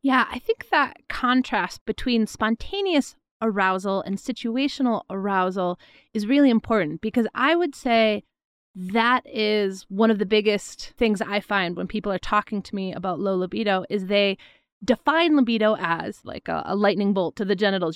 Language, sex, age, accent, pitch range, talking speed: English, female, 30-49, American, 200-265 Hz, 165 wpm